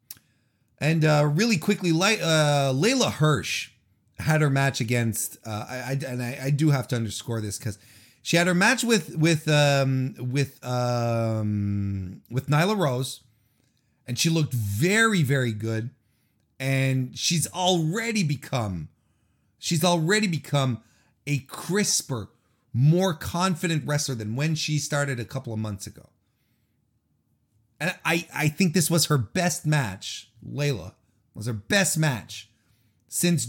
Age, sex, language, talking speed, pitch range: 30-49, male, English, 140 wpm, 115-190 Hz